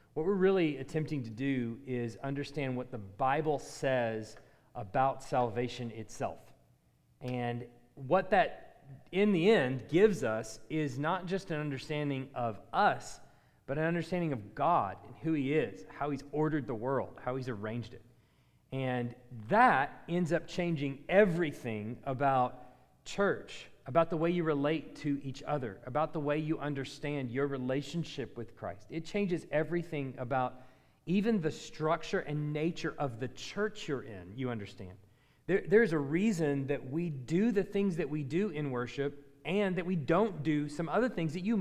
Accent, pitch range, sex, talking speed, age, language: American, 130-175 Hz, male, 160 wpm, 40-59, English